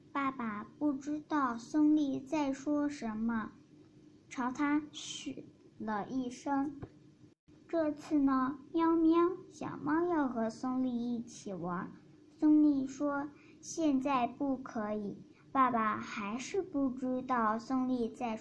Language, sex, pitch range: Chinese, male, 240-295 Hz